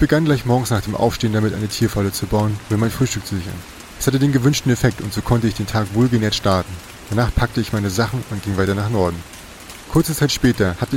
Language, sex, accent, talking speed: German, male, German, 240 wpm